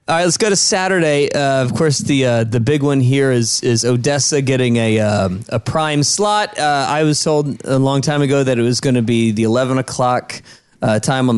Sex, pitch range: male, 120-150 Hz